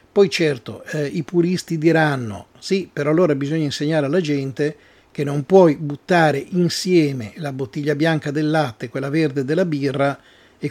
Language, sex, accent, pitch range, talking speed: Italian, male, native, 135-155 Hz, 155 wpm